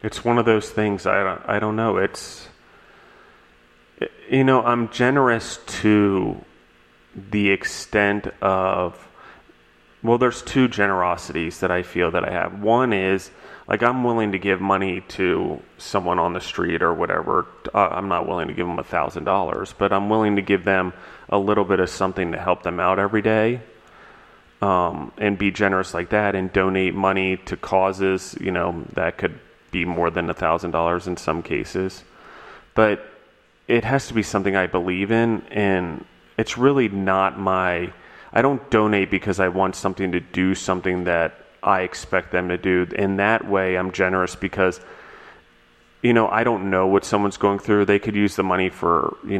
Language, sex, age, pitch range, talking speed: English, male, 30-49, 90-105 Hz, 175 wpm